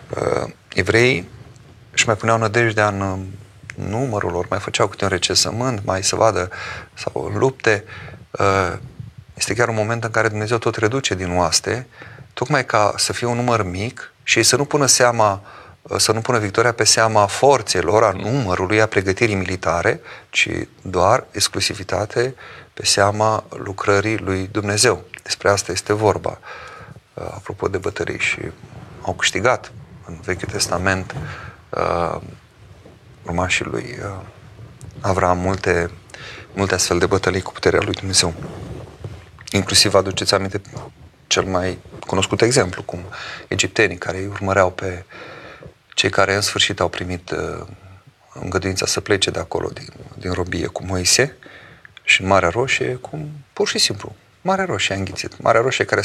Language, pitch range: Romanian, 95-115 Hz